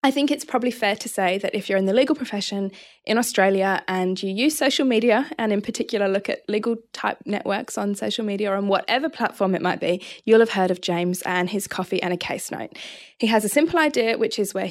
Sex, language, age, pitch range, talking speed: female, English, 20-39, 185-230 Hz, 240 wpm